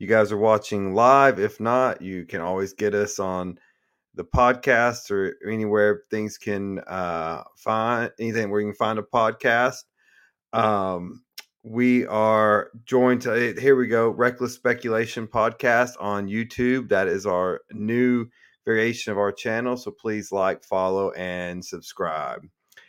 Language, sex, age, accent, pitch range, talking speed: English, male, 30-49, American, 100-125 Hz, 145 wpm